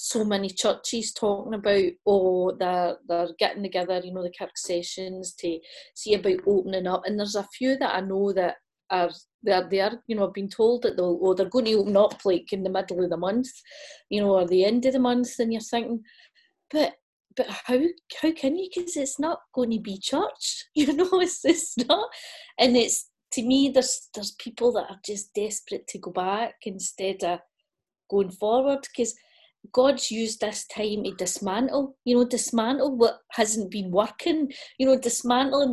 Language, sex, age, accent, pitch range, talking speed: English, female, 30-49, British, 195-260 Hz, 195 wpm